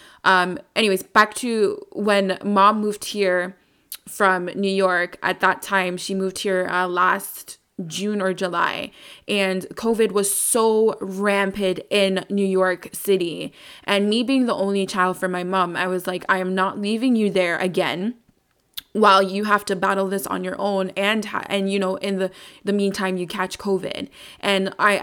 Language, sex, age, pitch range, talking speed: English, female, 20-39, 185-205 Hz, 175 wpm